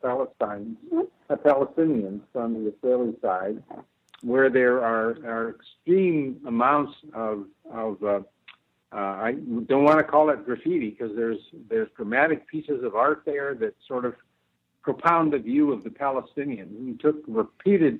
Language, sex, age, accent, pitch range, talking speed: English, male, 60-79, American, 115-140 Hz, 145 wpm